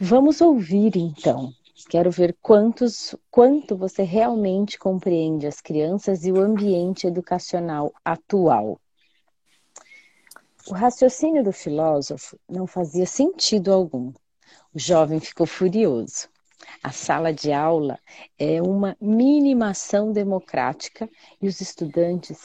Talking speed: 105 wpm